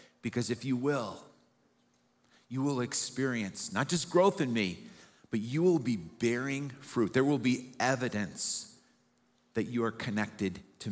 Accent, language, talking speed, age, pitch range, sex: American, English, 150 wpm, 50-69, 115-145 Hz, male